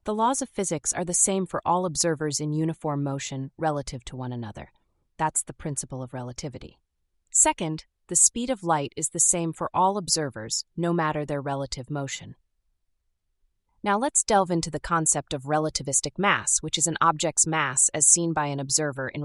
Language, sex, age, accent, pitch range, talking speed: English, female, 30-49, American, 140-180 Hz, 180 wpm